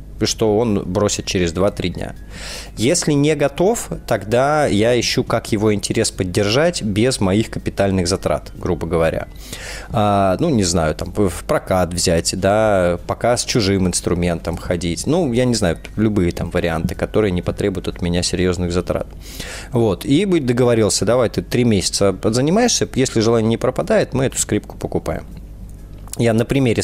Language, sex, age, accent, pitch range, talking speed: Russian, male, 20-39, native, 90-115 Hz, 150 wpm